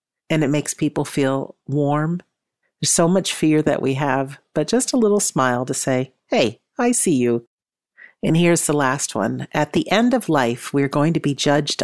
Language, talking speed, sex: English, 200 wpm, female